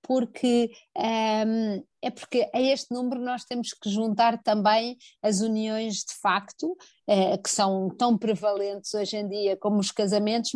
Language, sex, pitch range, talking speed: Portuguese, female, 205-235 Hz, 155 wpm